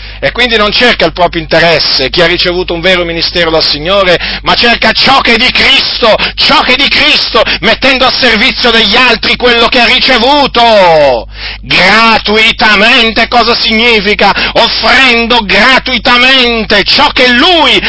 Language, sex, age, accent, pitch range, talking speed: Italian, male, 50-69, native, 205-250 Hz, 150 wpm